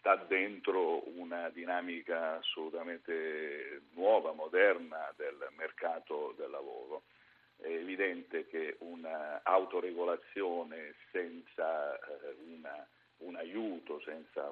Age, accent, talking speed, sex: 50-69, native, 80 wpm, male